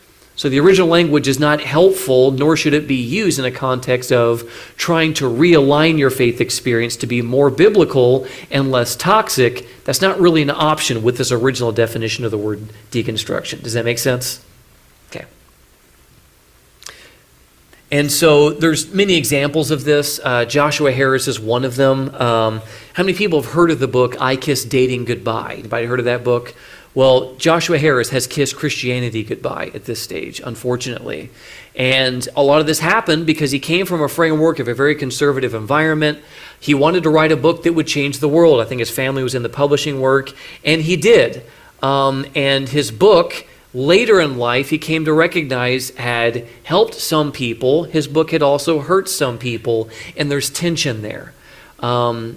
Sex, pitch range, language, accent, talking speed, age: male, 125-155 Hz, English, American, 180 wpm, 40-59